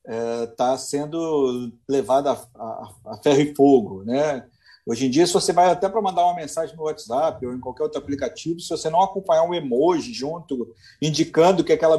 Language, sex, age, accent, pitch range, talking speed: Portuguese, male, 40-59, Brazilian, 135-180 Hz, 190 wpm